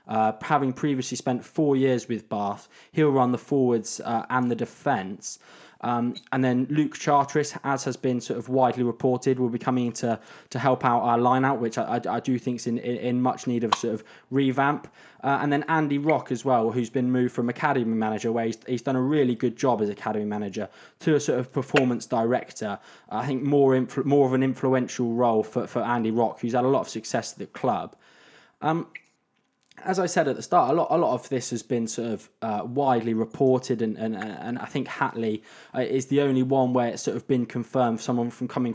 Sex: male